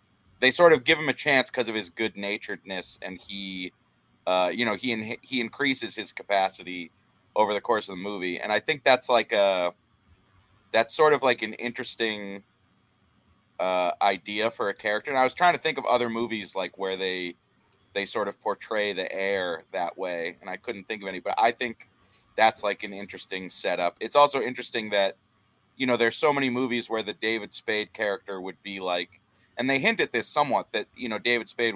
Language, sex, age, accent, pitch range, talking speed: English, male, 30-49, American, 95-115 Hz, 205 wpm